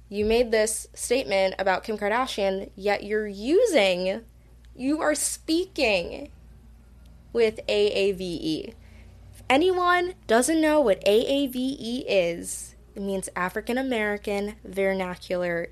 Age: 20-39